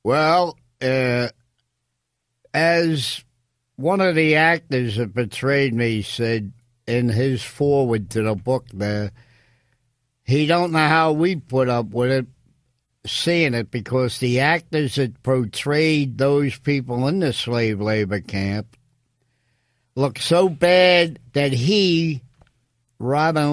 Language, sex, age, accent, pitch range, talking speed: English, male, 60-79, American, 115-140 Hz, 120 wpm